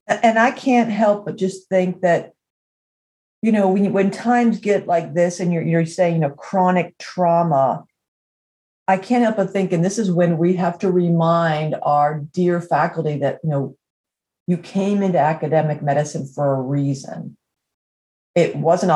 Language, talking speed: English, 165 wpm